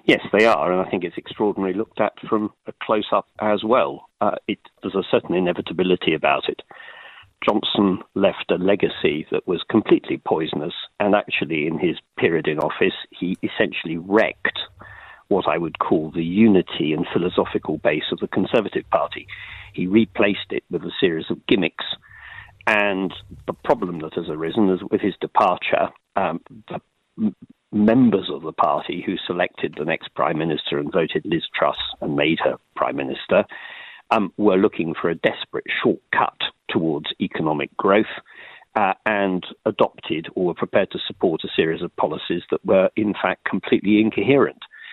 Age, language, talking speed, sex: 50-69, English, 160 wpm, male